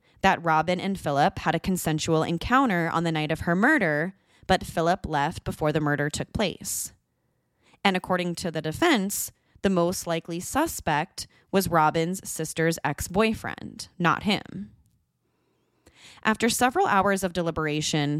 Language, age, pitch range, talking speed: English, 20-39, 160-210 Hz, 140 wpm